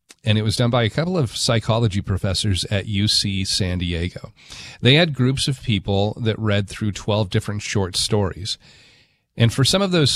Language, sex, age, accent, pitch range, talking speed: English, male, 40-59, American, 105-135 Hz, 185 wpm